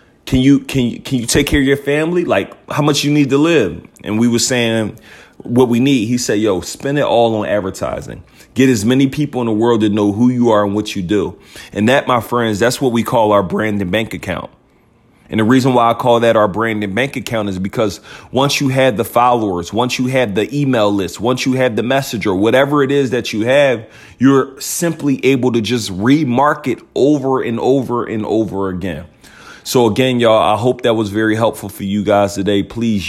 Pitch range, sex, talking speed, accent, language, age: 100-125 Hz, male, 225 wpm, American, English, 30-49